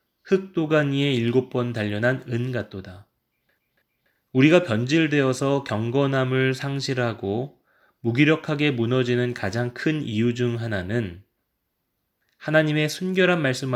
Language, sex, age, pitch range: Korean, male, 20-39, 110-145 Hz